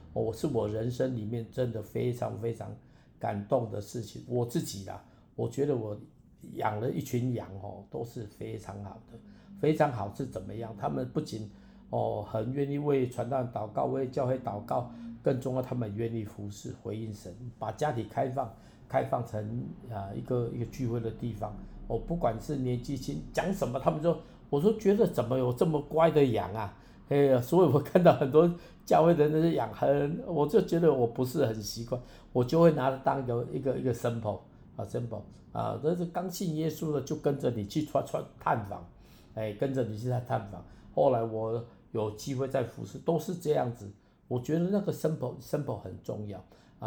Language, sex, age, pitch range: Chinese, male, 50-69, 110-145 Hz